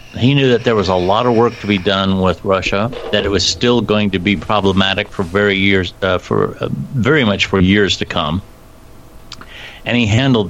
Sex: male